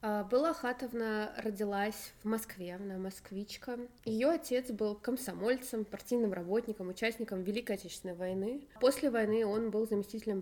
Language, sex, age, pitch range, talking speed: Russian, female, 20-39, 190-230 Hz, 125 wpm